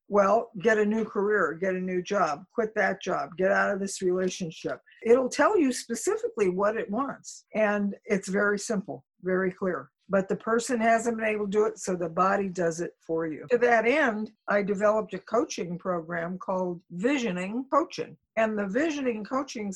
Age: 50-69